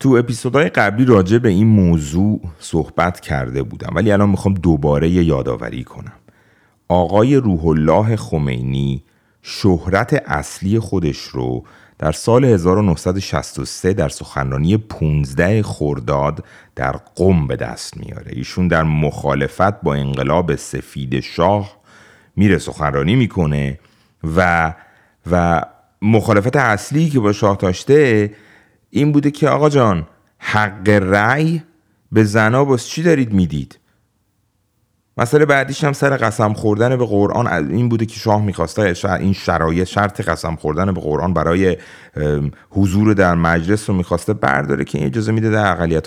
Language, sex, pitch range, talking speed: Persian, male, 80-110 Hz, 130 wpm